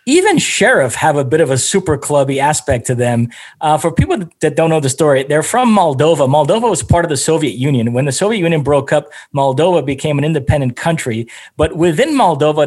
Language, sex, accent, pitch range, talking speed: English, male, American, 145-195 Hz, 210 wpm